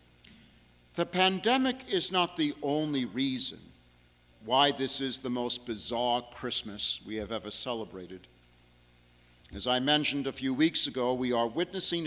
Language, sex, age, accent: English, male, 50-69, American